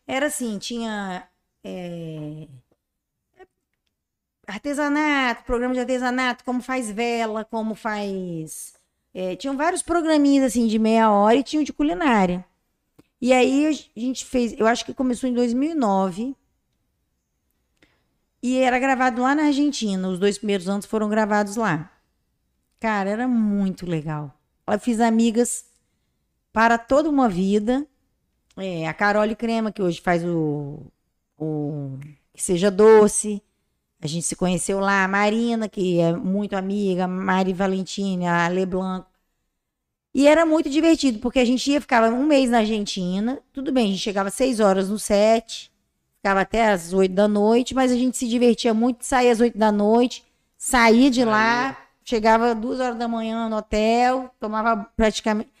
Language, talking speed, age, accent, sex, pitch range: Portuguese, 150 wpm, 20-39, Brazilian, female, 195-250 Hz